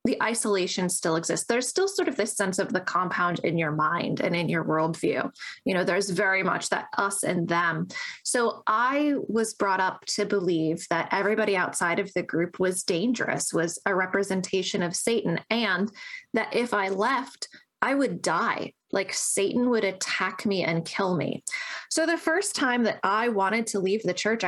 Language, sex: English, female